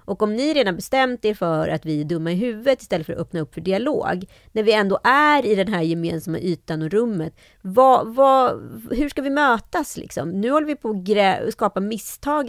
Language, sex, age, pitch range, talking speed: Swedish, female, 30-49, 170-260 Hz, 215 wpm